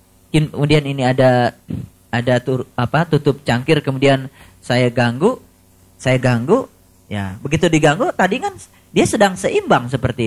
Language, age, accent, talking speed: Indonesian, 30-49, native, 130 wpm